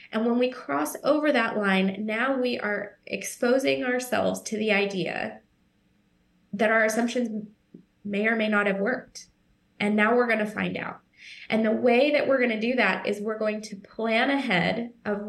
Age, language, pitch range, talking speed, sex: 20-39, English, 205-245 Hz, 185 wpm, female